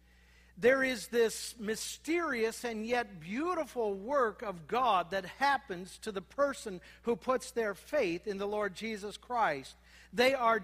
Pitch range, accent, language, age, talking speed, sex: 200-255 Hz, American, English, 50-69, 145 wpm, male